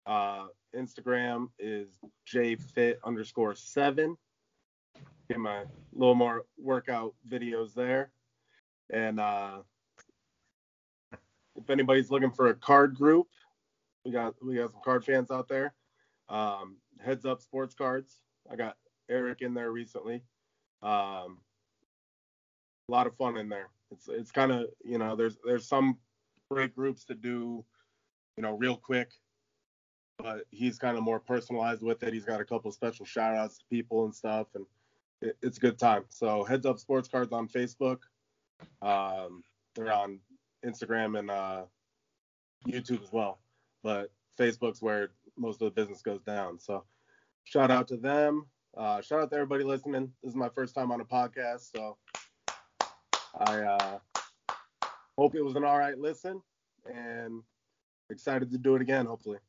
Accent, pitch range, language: American, 105-130 Hz, English